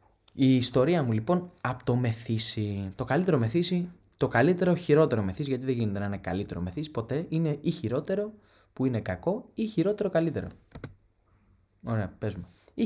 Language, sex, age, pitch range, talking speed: Greek, male, 20-39, 105-160 Hz, 160 wpm